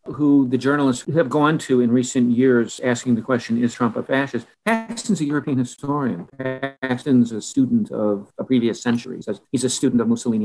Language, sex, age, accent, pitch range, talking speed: English, male, 50-69, American, 120-150 Hz, 185 wpm